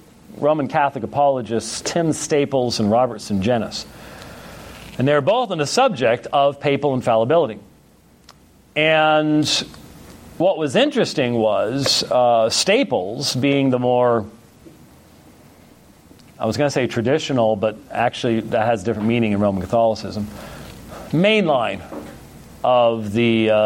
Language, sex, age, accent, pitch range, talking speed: English, male, 40-59, American, 110-155 Hz, 115 wpm